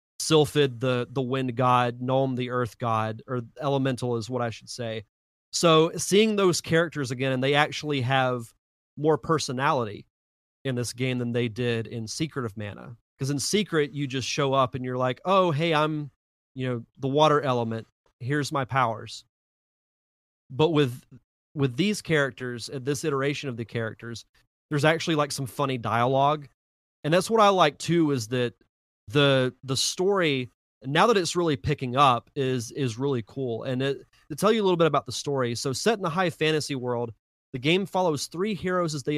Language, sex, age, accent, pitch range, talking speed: English, male, 30-49, American, 125-155 Hz, 185 wpm